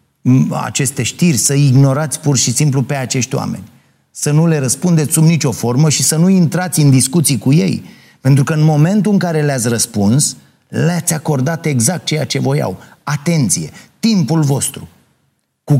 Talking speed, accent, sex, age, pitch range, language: 165 wpm, native, male, 30-49, 120-150 Hz, Romanian